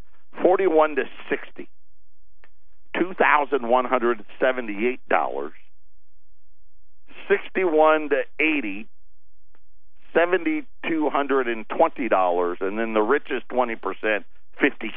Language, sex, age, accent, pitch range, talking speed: English, male, 50-69, American, 80-120 Hz, 50 wpm